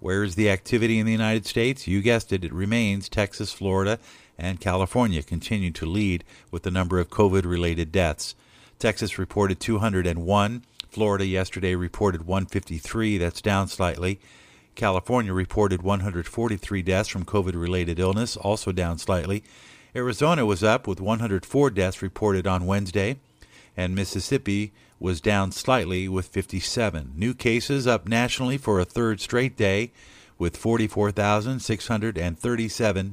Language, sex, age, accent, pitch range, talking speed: English, male, 50-69, American, 90-110 Hz, 130 wpm